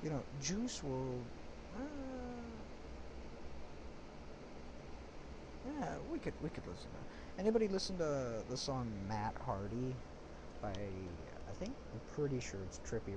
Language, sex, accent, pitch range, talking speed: English, male, American, 75-115 Hz, 130 wpm